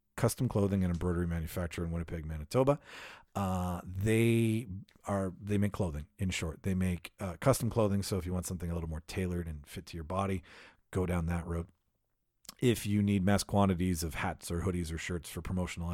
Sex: male